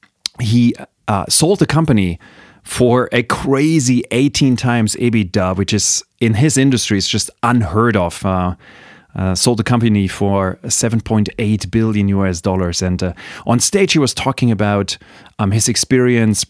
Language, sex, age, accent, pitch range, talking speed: English, male, 30-49, German, 100-135 Hz, 150 wpm